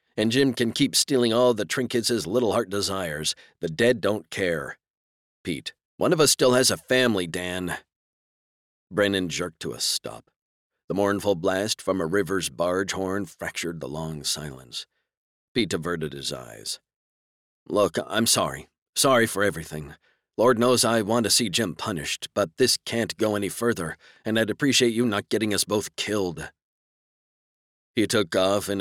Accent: American